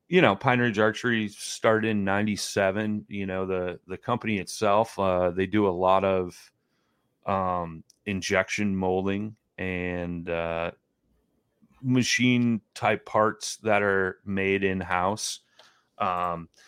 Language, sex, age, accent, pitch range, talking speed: English, male, 30-49, American, 85-105 Hz, 120 wpm